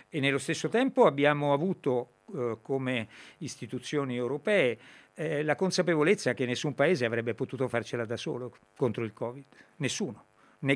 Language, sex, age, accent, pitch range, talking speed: Italian, male, 50-69, native, 120-150 Hz, 145 wpm